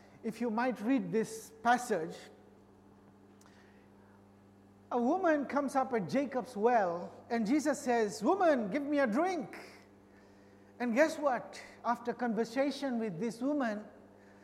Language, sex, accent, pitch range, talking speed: English, male, Indian, 195-285 Hz, 120 wpm